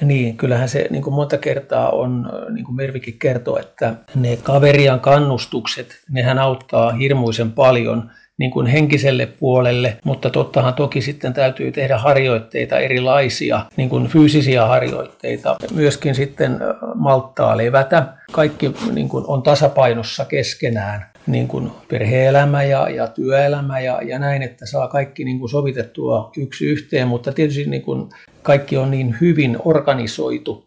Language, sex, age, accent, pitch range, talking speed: Finnish, male, 50-69, native, 125-150 Hz, 140 wpm